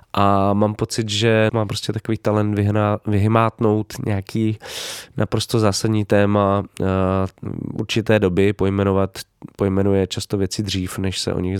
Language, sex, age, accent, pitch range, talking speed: Czech, male, 20-39, native, 100-120 Hz, 125 wpm